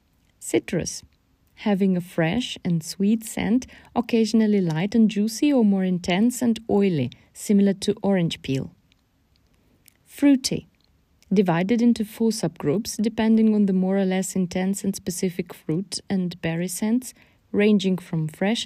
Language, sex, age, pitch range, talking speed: English, female, 30-49, 175-225 Hz, 130 wpm